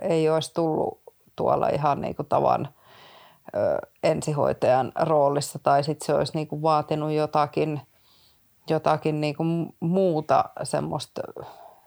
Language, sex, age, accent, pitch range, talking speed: Finnish, female, 30-49, native, 145-155 Hz, 105 wpm